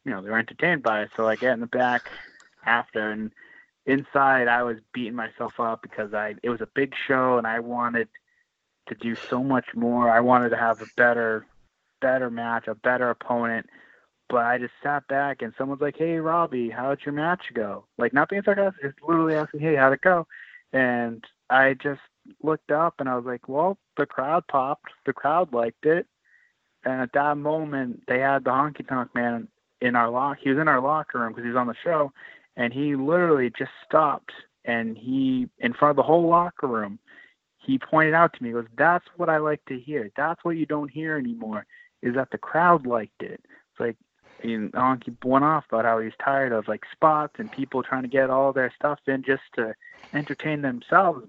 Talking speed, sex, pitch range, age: 210 wpm, male, 120-150 Hz, 20-39